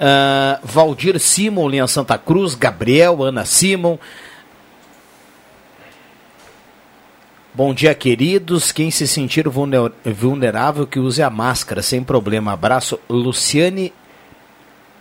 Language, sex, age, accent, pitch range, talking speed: Portuguese, male, 50-69, Brazilian, 125-160 Hz, 95 wpm